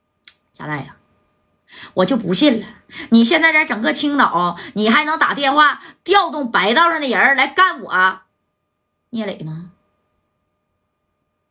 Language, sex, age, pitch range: Chinese, female, 20-39, 185-260 Hz